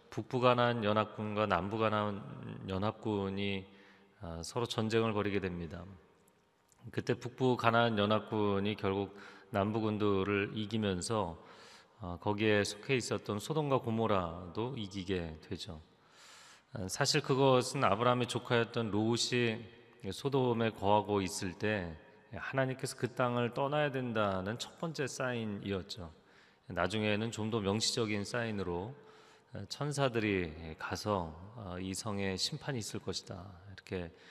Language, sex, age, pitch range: Korean, male, 30-49, 95-115 Hz